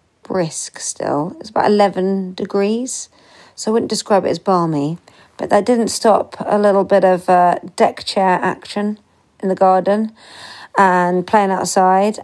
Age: 40-59